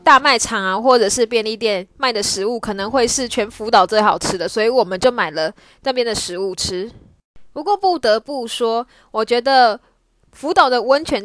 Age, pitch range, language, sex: 10-29, 215-275 Hz, Chinese, female